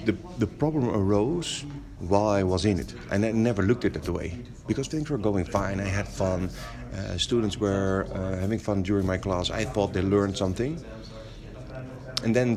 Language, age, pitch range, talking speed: English, 40-59, 100-130 Hz, 195 wpm